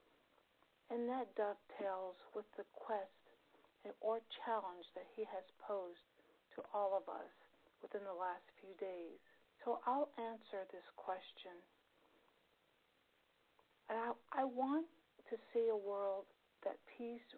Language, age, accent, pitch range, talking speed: English, 50-69, American, 200-245 Hz, 120 wpm